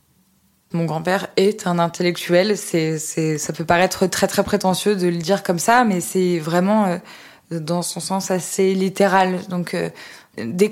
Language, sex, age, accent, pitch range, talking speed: French, female, 20-39, French, 170-200 Hz, 170 wpm